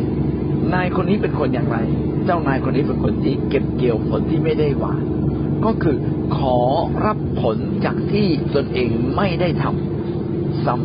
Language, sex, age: Thai, male, 60-79